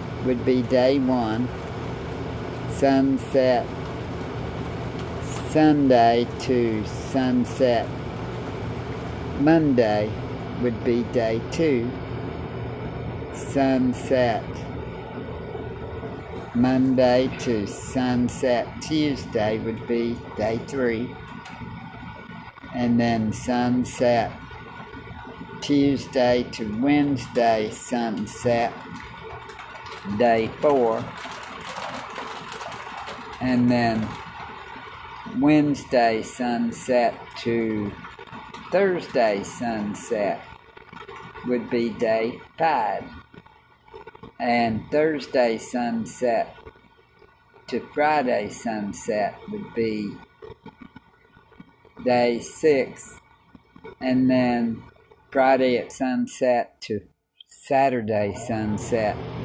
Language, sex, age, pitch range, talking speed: English, male, 50-69, 115-135 Hz, 60 wpm